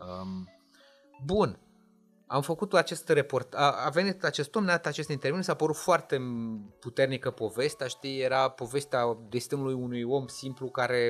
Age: 30-49